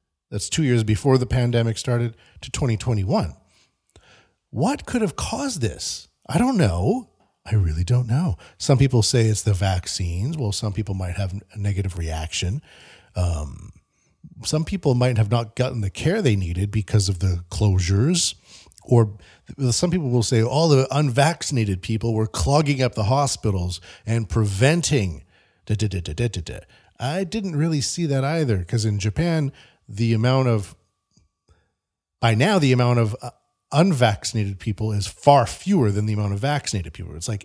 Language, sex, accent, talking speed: English, male, American, 155 wpm